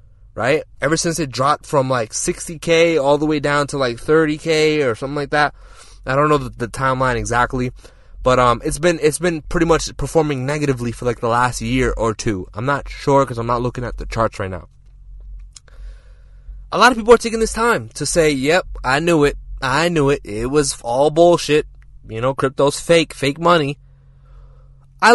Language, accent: English, American